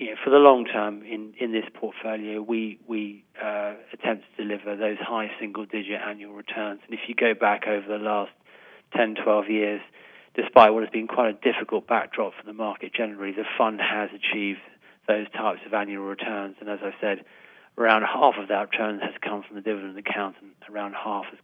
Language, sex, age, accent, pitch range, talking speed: English, male, 30-49, British, 100-115 Hz, 200 wpm